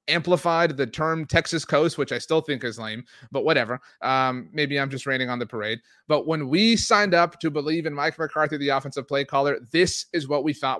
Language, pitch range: English, 130-165 Hz